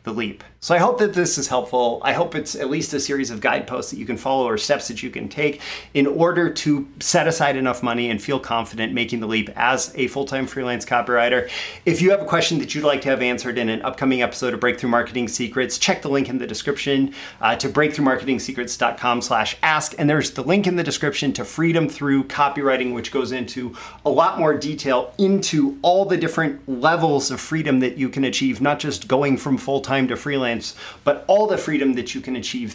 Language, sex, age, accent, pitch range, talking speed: English, male, 30-49, American, 125-150 Hz, 220 wpm